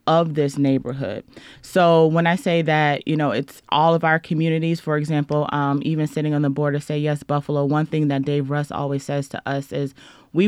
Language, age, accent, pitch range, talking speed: English, 30-49, American, 140-160 Hz, 220 wpm